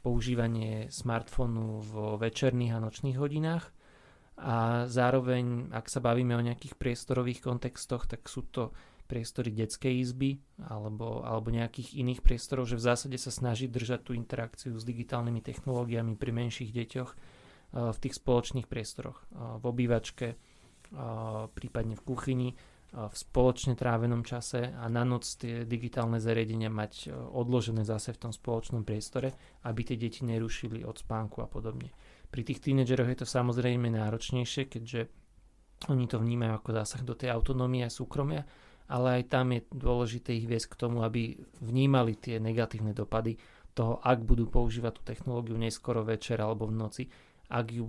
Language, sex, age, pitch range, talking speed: Slovak, male, 20-39, 115-125 Hz, 150 wpm